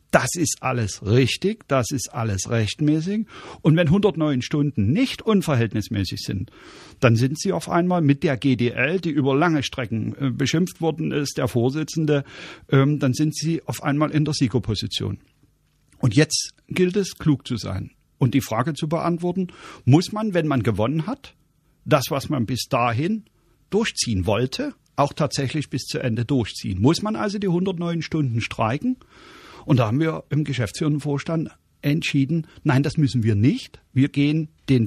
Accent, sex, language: German, male, German